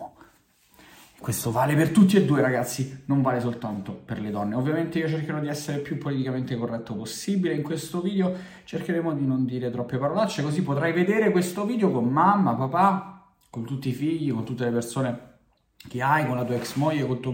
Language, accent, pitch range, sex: Italian, native, 115-160 Hz, male